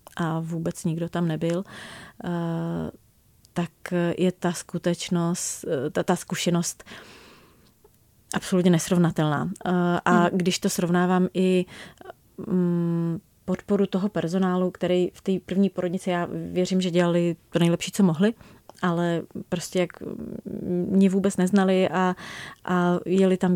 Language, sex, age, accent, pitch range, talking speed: Czech, female, 30-49, native, 170-190 Hz, 115 wpm